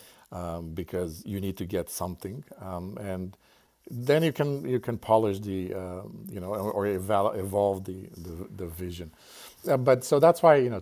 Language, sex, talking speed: English, male, 190 wpm